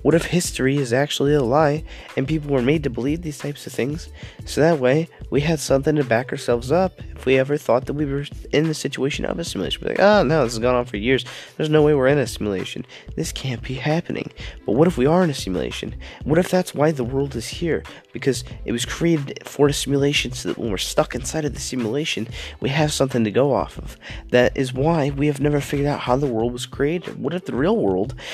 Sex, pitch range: male, 125-155 Hz